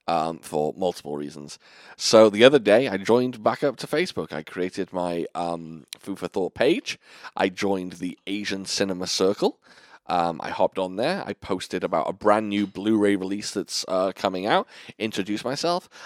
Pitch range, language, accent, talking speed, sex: 95-125 Hz, English, British, 170 wpm, male